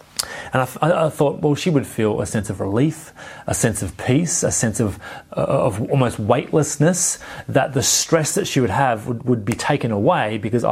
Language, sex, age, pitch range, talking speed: English, male, 30-49, 115-145 Hz, 200 wpm